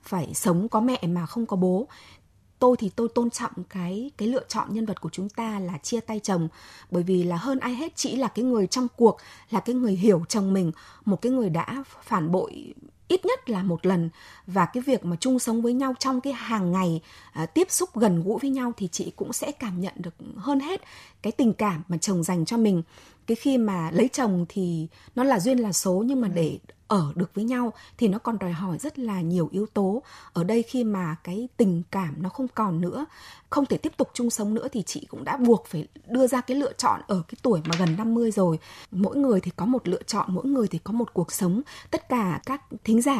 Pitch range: 185-250 Hz